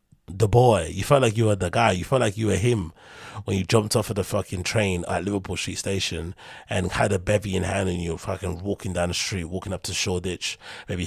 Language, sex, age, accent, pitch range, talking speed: English, male, 30-49, British, 90-110 Hz, 245 wpm